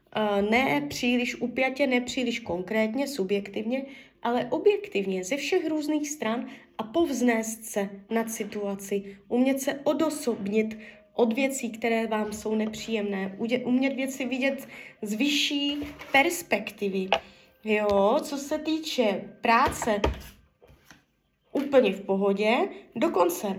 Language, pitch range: Czech, 215-280 Hz